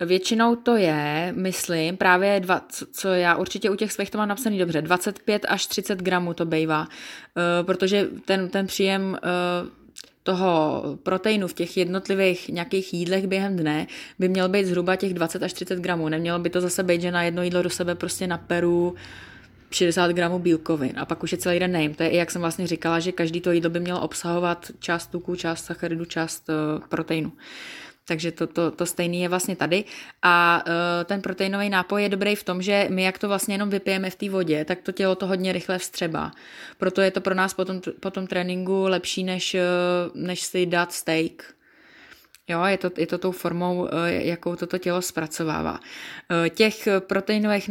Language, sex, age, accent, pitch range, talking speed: Czech, female, 20-39, native, 170-190 Hz, 195 wpm